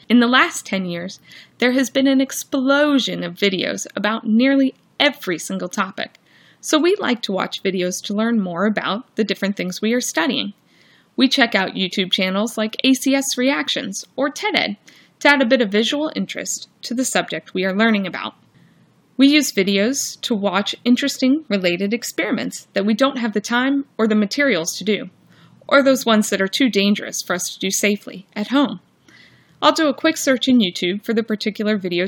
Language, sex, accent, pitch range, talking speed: English, female, American, 195-265 Hz, 190 wpm